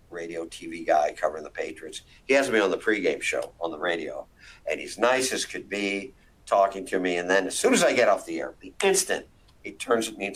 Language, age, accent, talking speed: English, 50-69, American, 245 wpm